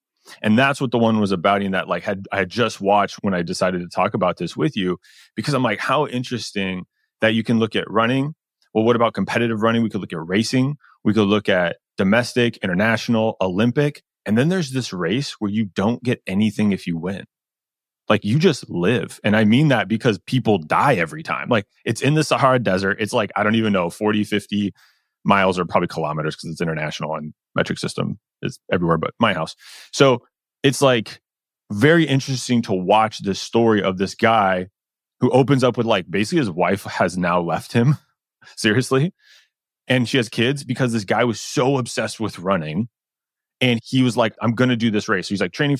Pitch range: 100-125 Hz